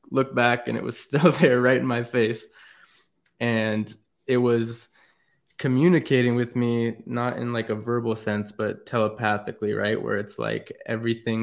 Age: 20-39